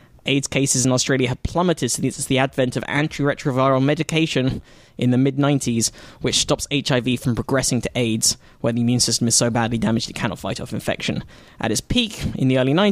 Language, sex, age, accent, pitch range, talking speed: English, male, 10-29, British, 120-145 Hz, 190 wpm